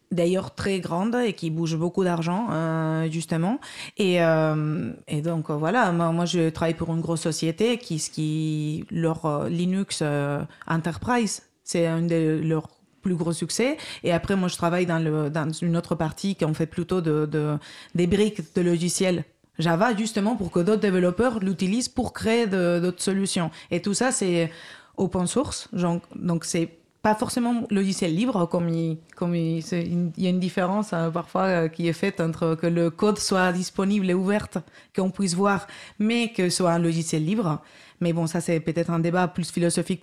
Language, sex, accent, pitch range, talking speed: French, female, French, 165-200 Hz, 185 wpm